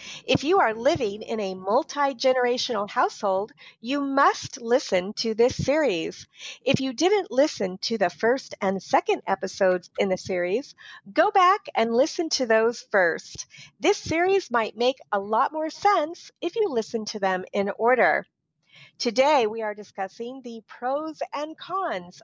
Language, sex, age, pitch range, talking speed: English, female, 40-59, 210-300 Hz, 155 wpm